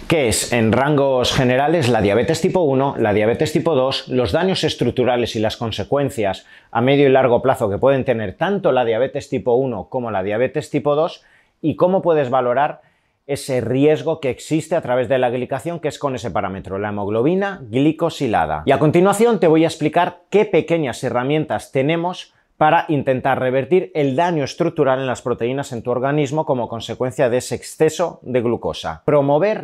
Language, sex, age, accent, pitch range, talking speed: Spanish, male, 30-49, Spanish, 120-155 Hz, 180 wpm